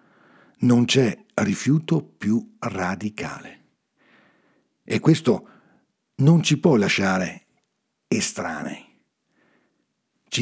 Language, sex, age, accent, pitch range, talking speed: Italian, male, 60-79, native, 110-175 Hz, 75 wpm